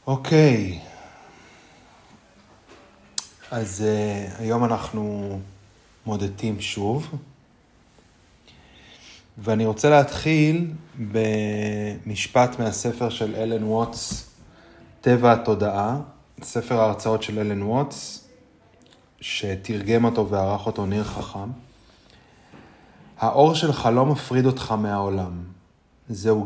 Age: 30-49